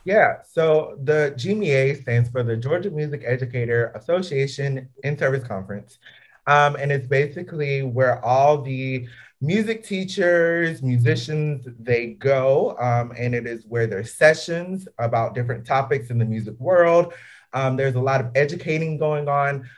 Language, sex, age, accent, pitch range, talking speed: English, male, 30-49, American, 125-155 Hz, 145 wpm